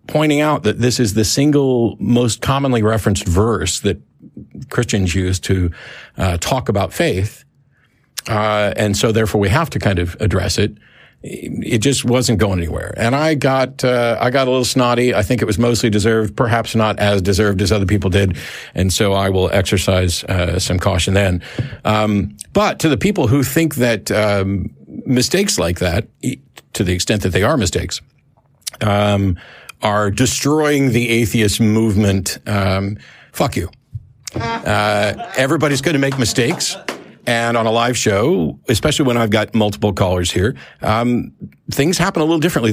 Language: English